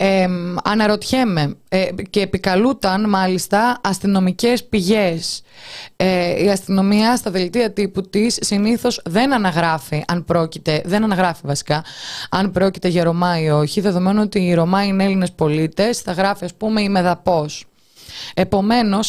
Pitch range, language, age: 170-225 Hz, Greek, 20-39